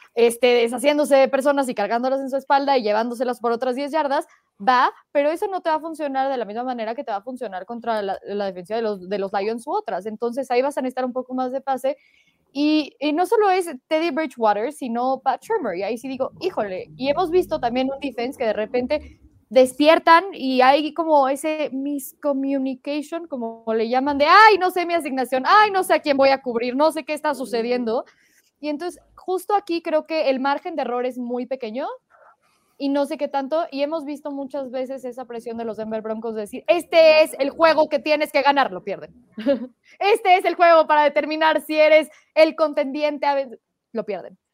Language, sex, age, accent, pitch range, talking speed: Spanish, female, 20-39, Mexican, 250-310 Hz, 215 wpm